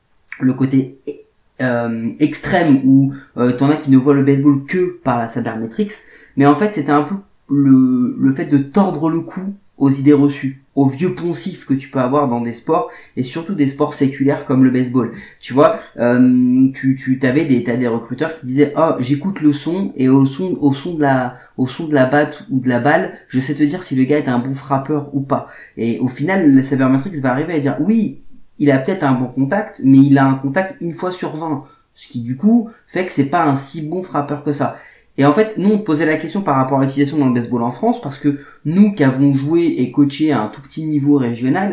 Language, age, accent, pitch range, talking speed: French, 30-49, French, 130-165 Hz, 240 wpm